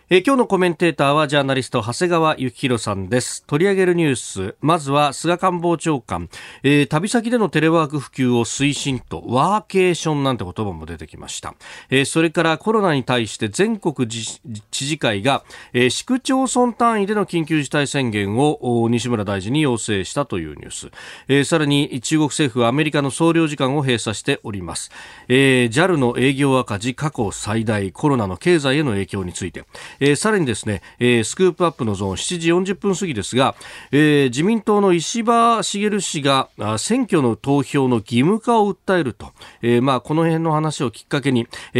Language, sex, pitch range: Japanese, male, 115-160 Hz